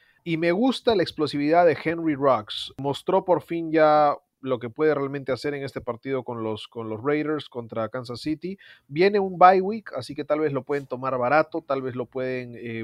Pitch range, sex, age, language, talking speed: 125-165 Hz, male, 30-49, Spanish, 210 wpm